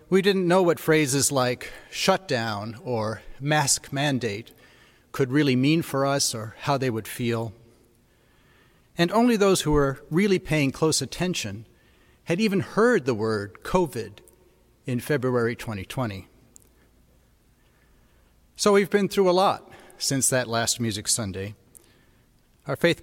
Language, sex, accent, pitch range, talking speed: English, male, American, 115-155 Hz, 135 wpm